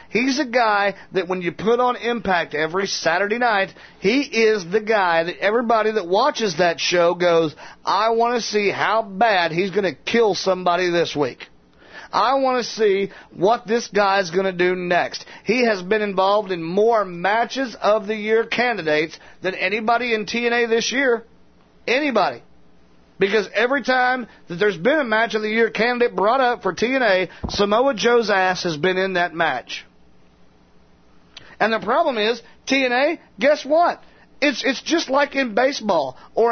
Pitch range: 180-240 Hz